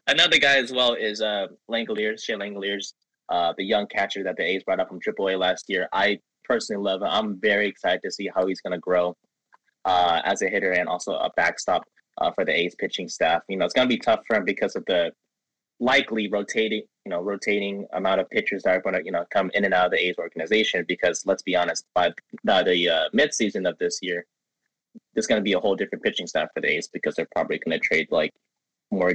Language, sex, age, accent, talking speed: English, male, 20-39, American, 240 wpm